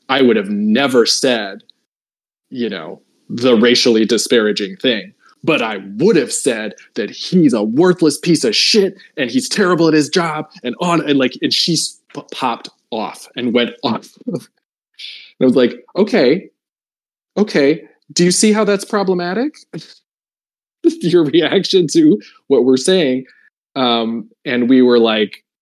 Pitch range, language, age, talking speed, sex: 110-185 Hz, English, 20-39, 150 wpm, male